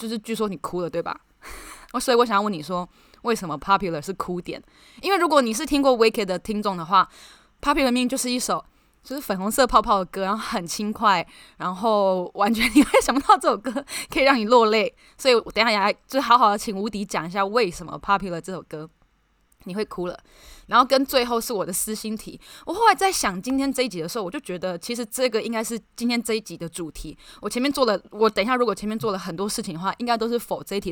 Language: Chinese